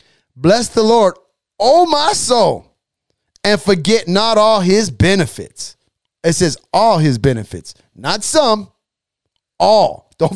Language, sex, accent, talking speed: English, male, American, 120 wpm